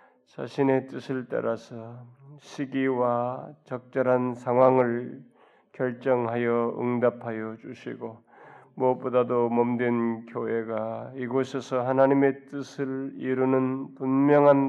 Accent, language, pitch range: native, Korean, 125-135 Hz